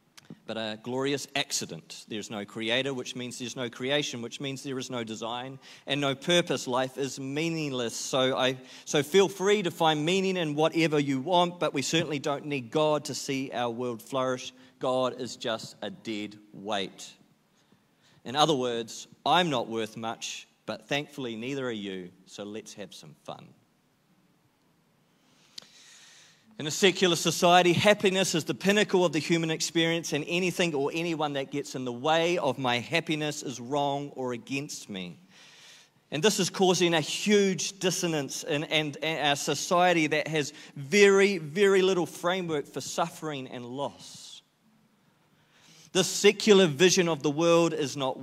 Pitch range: 130-170 Hz